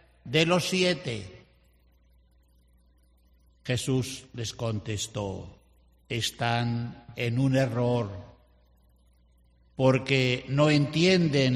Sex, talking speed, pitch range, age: male, 65 wpm, 105-145 Hz, 60-79